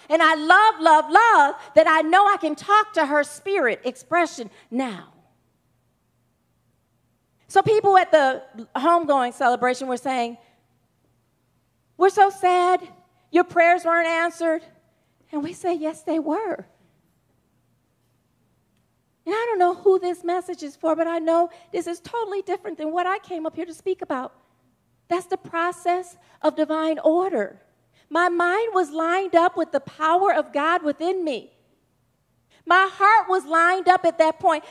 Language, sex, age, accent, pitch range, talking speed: English, female, 40-59, American, 305-375 Hz, 155 wpm